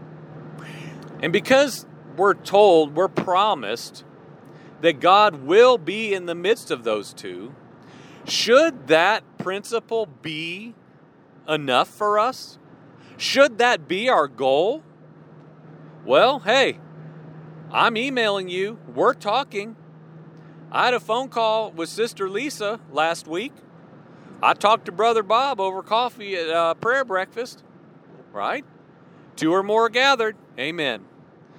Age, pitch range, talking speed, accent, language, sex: 40-59, 160-235 Hz, 120 wpm, American, English, male